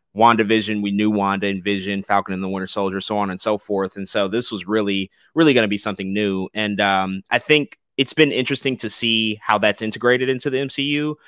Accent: American